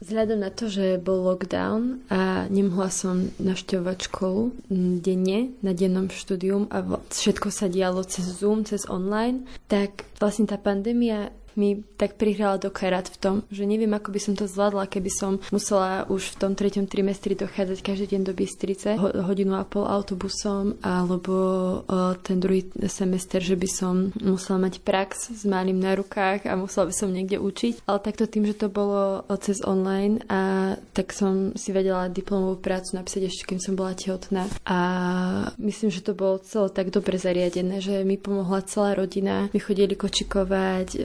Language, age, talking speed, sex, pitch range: Slovak, 20-39, 170 wpm, female, 190-200 Hz